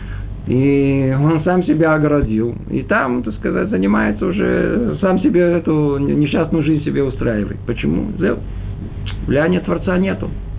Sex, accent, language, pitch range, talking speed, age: male, native, Russian, 100-165 Hz, 125 wpm, 50-69